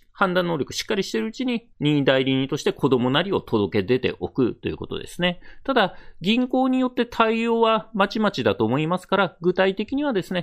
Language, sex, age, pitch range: Japanese, male, 40-59, 135-215 Hz